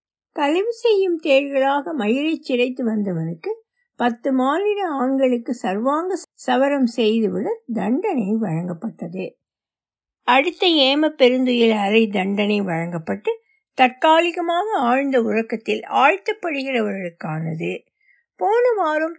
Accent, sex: native, female